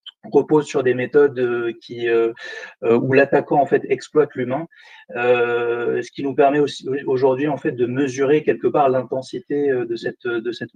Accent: French